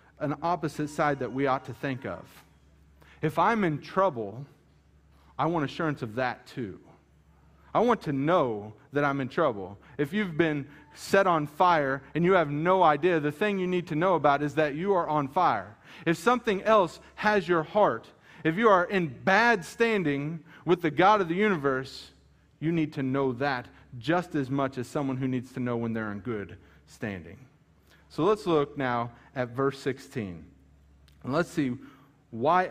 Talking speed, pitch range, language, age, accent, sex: 180 wpm, 125-165 Hz, English, 40-59, American, male